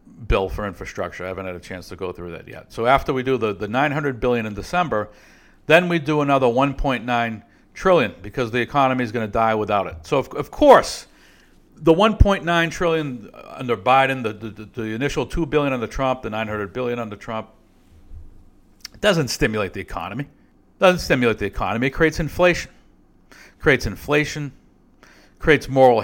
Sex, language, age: male, English, 60-79